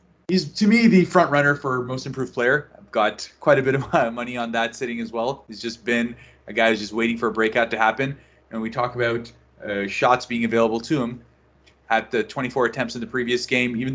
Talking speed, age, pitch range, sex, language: 230 wpm, 20-39, 115-140 Hz, male, English